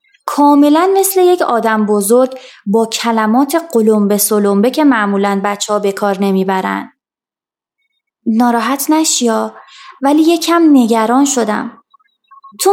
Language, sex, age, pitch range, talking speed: Persian, female, 20-39, 220-295 Hz, 110 wpm